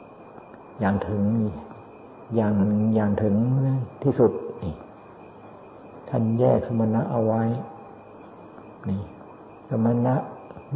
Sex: male